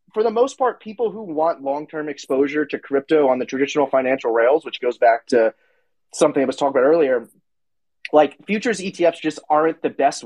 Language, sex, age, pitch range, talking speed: English, male, 30-49, 145-185 Hz, 200 wpm